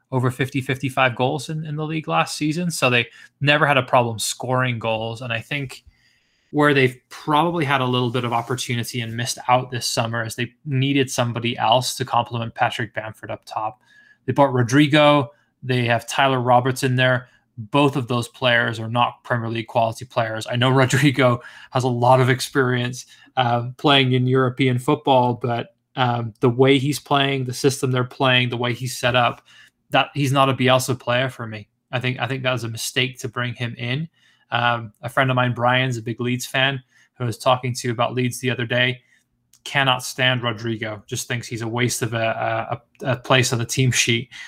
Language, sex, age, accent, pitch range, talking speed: English, male, 20-39, American, 120-130 Hz, 205 wpm